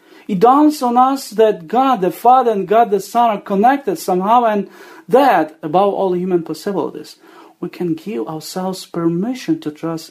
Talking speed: 165 wpm